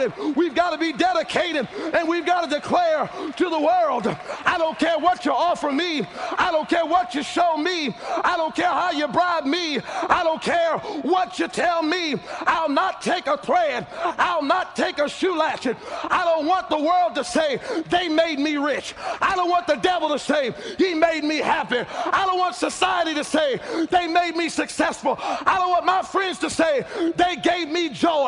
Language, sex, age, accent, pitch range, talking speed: English, male, 40-59, American, 285-360 Hz, 200 wpm